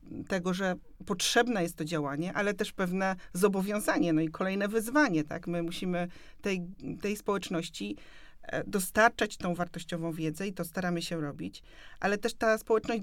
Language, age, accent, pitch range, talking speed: Polish, 40-59, native, 175-220 Hz, 150 wpm